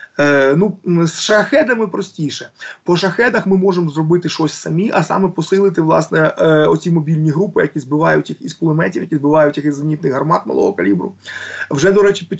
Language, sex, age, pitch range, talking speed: Ukrainian, male, 20-39, 150-180 Hz, 180 wpm